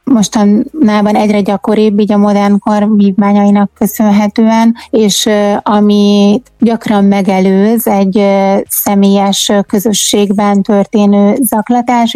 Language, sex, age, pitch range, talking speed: Hungarian, female, 30-49, 200-220 Hz, 85 wpm